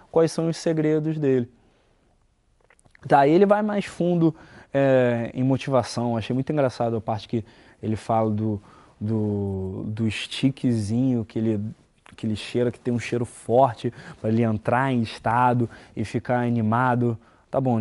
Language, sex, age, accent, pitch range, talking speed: Portuguese, male, 20-39, Brazilian, 110-145 Hz, 160 wpm